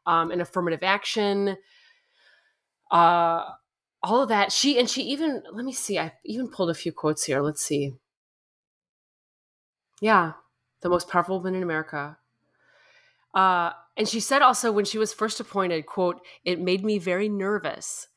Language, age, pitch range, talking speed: English, 20-39, 165-210 Hz, 155 wpm